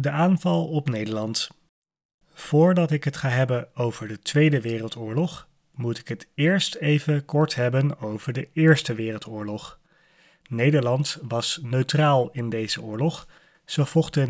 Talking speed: 135 wpm